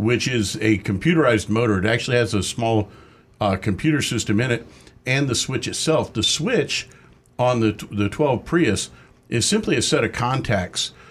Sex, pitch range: male, 105-140 Hz